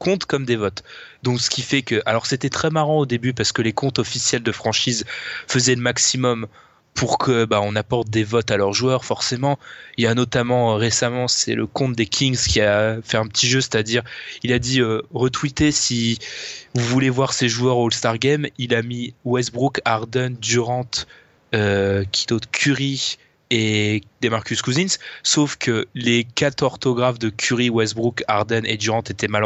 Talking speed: 190 wpm